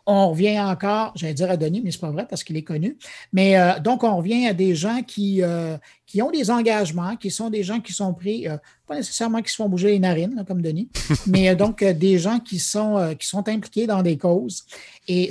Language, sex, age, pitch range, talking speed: French, male, 50-69, 175-215 Hz, 255 wpm